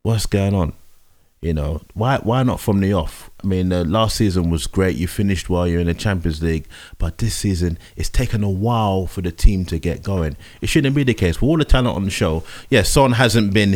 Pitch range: 85-105 Hz